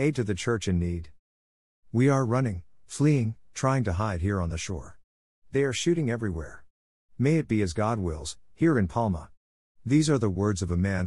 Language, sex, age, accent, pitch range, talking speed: English, male, 50-69, American, 90-115 Hz, 200 wpm